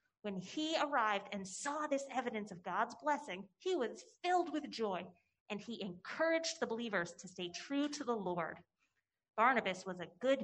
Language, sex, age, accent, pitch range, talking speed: English, female, 30-49, American, 190-270 Hz, 170 wpm